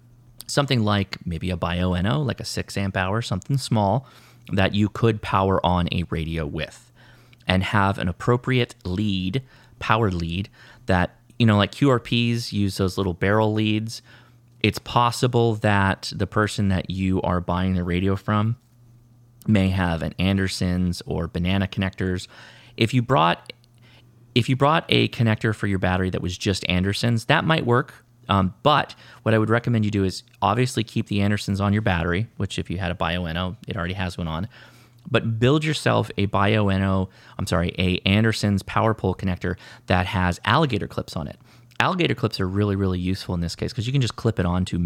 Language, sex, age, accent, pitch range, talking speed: English, male, 30-49, American, 90-120 Hz, 180 wpm